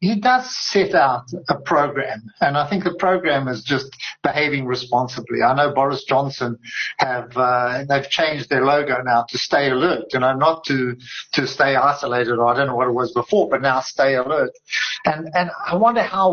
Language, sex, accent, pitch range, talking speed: English, male, British, 130-175 Hz, 200 wpm